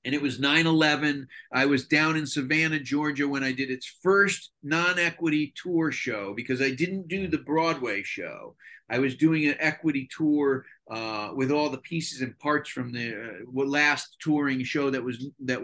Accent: American